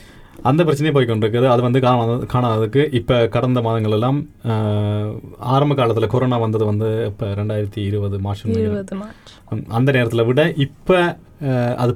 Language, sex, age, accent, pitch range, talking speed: Tamil, male, 30-49, native, 105-135 Hz, 120 wpm